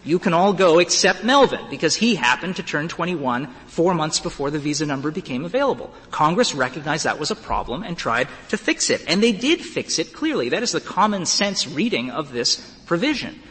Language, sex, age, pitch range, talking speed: English, male, 40-59, 140-185 Hz, 205 wpm